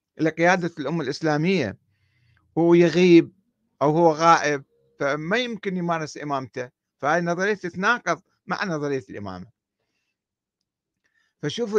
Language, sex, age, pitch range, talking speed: Arabic, male, 50-69, 135-185 Hz, 100 wpm